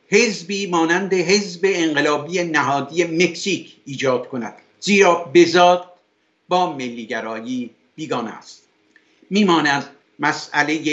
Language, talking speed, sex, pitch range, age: Persian, 90 wpm, male, 135-180 Hz, 50-69